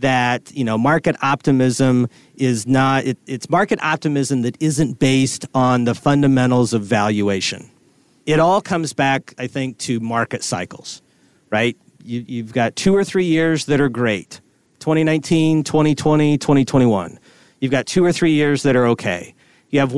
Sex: male